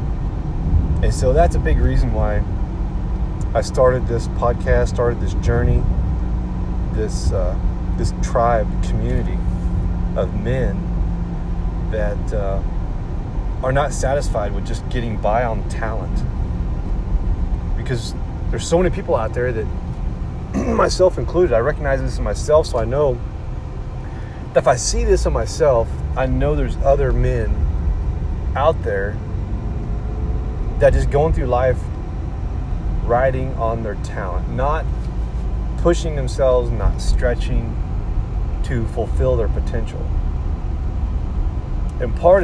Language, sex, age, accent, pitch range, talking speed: English, male, 30-49, American, 80-110 Hz, 120 wpm